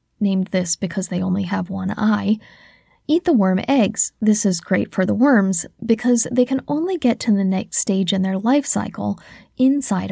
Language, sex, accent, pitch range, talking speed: English, female, American, 195-255 Hz, 190 wpm